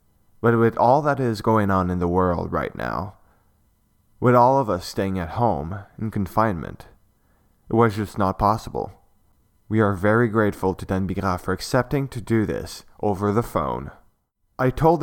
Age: 20-39